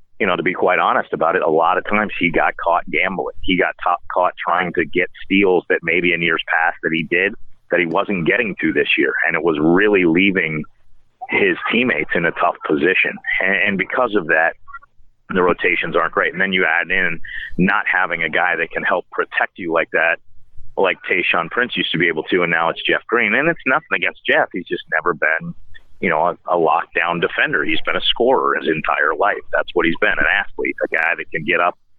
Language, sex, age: English, male, 40-59